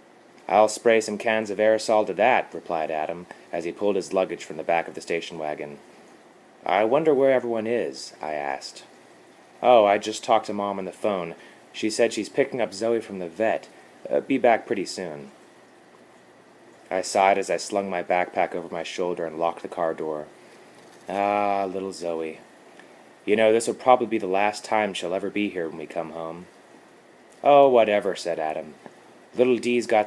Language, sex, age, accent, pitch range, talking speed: English, male, 30-49, American, 90-110 Hz, 185 wpm